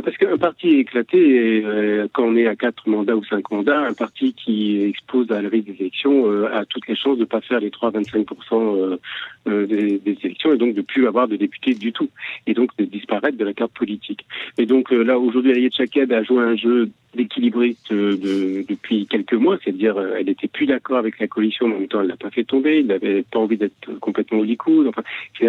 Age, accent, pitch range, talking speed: 40-59, French, 105-135 Hz, 245 wpm